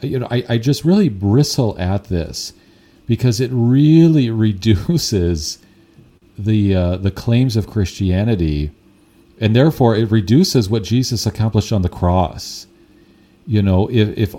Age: 40-59